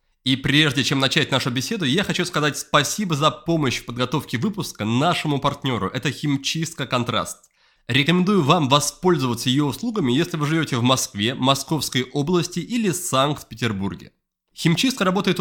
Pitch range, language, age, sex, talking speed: 130-170 Hz, Russian, 20-39, male, 140 wpm